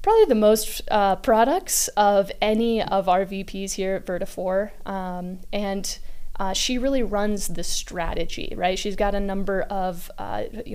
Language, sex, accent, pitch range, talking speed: English, female, American, 185-210 Hz, 160 wpm